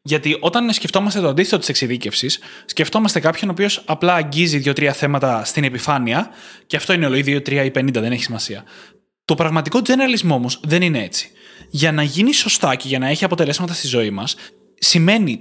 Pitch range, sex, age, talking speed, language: 135-195 Hz, male, 20-39, 185 wpm, Greek